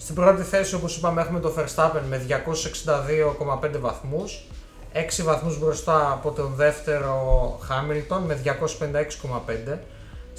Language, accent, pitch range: Greek, native, 140-165 Hz